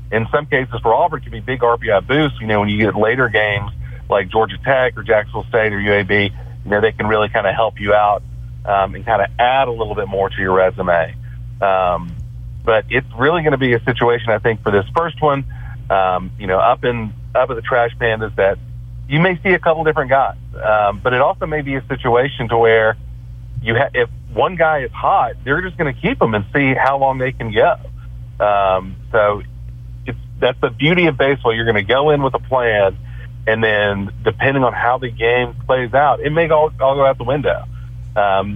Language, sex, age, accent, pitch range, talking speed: English, male, 40-59, American, 105-130 Hz, 225 wpm